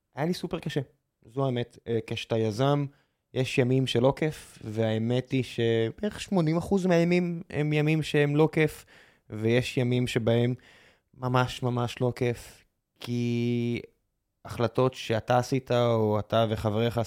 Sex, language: male, Hebrew